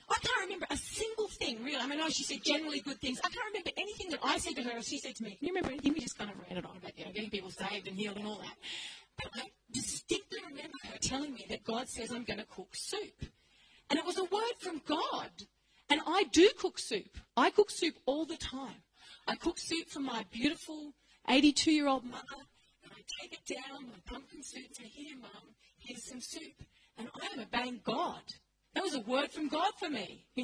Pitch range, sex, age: 255-340 Hz, female, 40-59